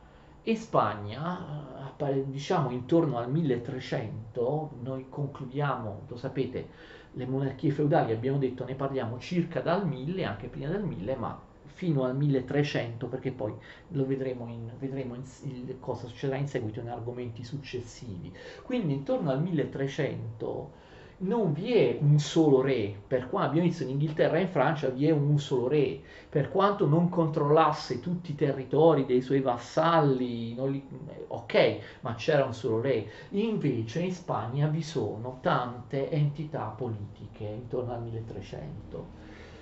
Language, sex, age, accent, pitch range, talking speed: Italian, male, 40-59, native, 125-160 Hz, 145 wpm